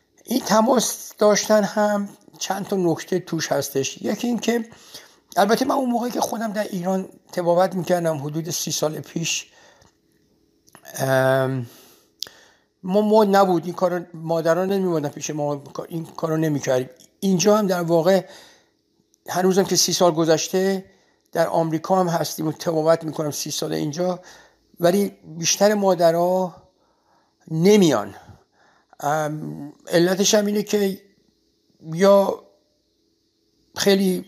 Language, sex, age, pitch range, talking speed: Persian, male, 60-79, 155-190 Hz, 120 wpm